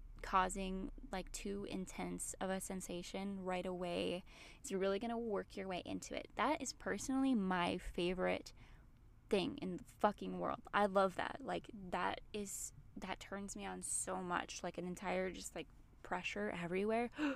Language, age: English, 10-29